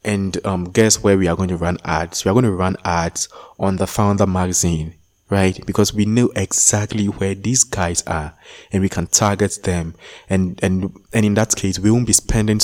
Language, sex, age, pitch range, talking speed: English, male, 20-39, 90-100 Hz, 210 wpm